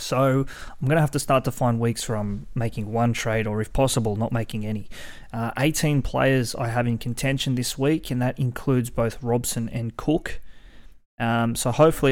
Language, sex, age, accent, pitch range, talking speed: English, male, 20-39, Australian, 110-135 Hz, 200 wpm